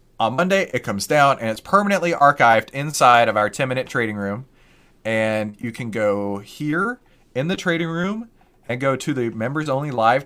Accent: American